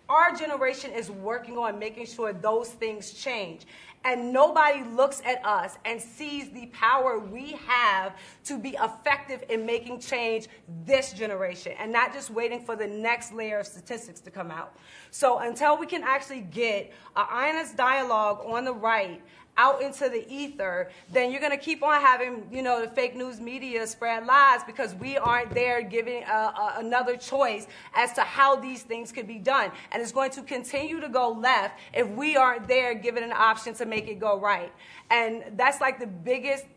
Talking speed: 185 wpm